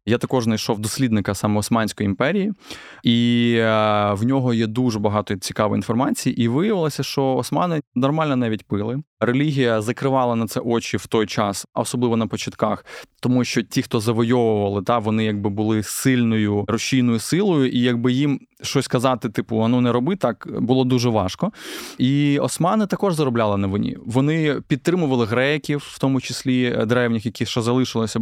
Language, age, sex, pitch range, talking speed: Ukrainian, 20-39, male, 110-135 Hz, 160 wpm